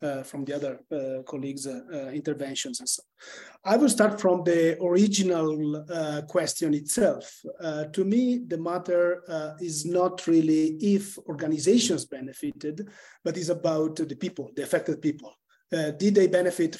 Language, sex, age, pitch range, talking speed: English, male, 30-49, 145-180 Hz, 155 wpm